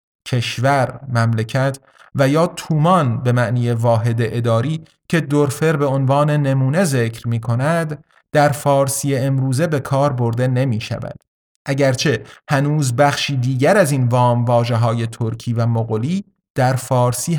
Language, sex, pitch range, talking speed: Persian, male, 120-150 Hz, 130 wpm